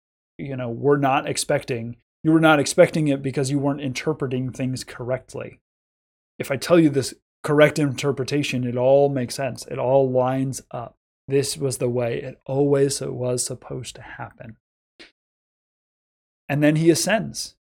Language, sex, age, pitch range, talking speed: English, male, 30-49, 125-150 Hz, 155 wpm